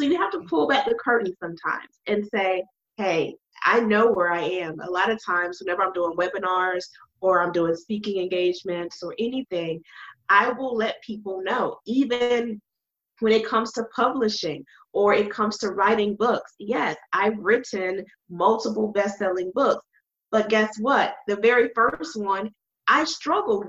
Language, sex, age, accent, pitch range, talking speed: English, female, 20-39, American, 190-235 Hz, 165 wpm